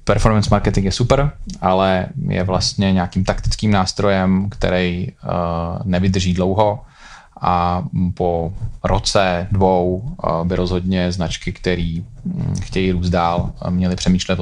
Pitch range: 85-95 Hz